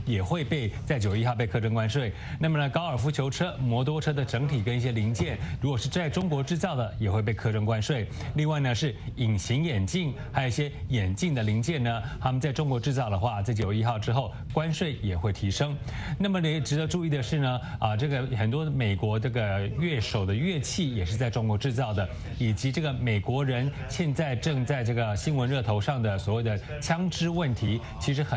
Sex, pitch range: male, 110-150 Hz